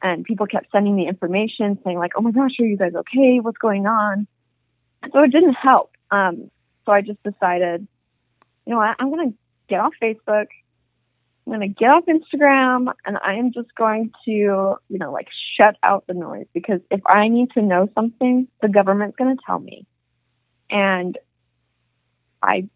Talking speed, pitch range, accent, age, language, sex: 185 wpm, 180-225 Hz, American, 20-39, English, female